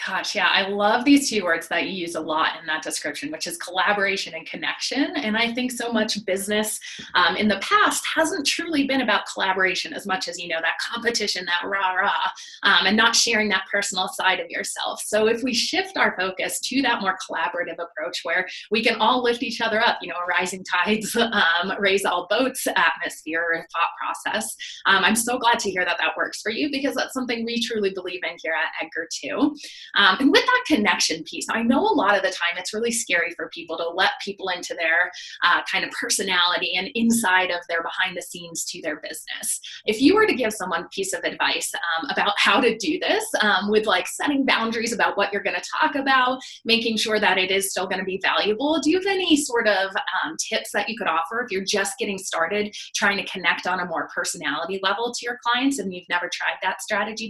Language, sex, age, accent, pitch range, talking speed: English, female, 20-39, American, 180-240 Hz, 225 wpm